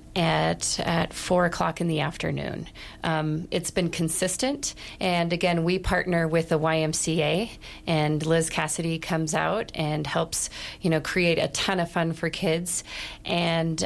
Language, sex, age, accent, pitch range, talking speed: English, female, 30-49, American, 160-180 Hz, 150 wpm